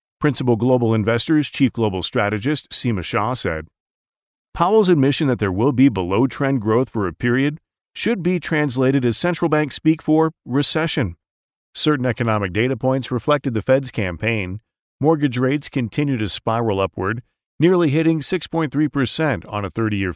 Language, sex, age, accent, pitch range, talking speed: English, male, 40-59, American, 110-150 Hz, 145 wpm